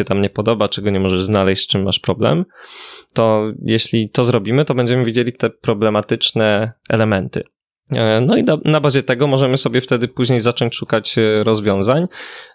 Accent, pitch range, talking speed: native, 105-125 Hz, 160 wpm